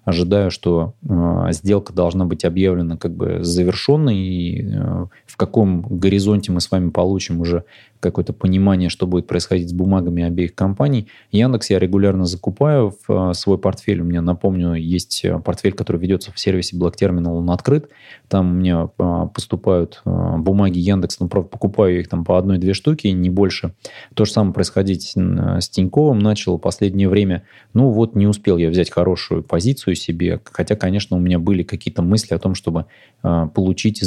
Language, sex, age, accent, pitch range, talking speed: Russian, male, 20-39, native, 90-105 Hz, 175 wpm